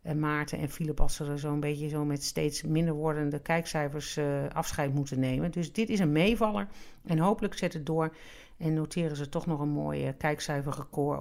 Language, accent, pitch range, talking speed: Dutch, Dutch, 155-200 Hz, 200 wpm